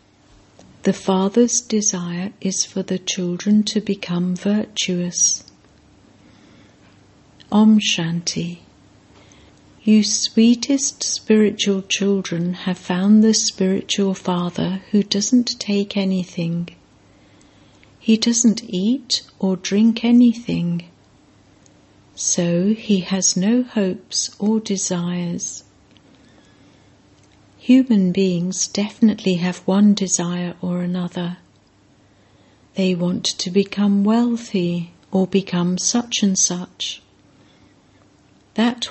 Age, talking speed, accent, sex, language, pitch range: 60-79, 90 wpm, British, female, English, 175-210 Hz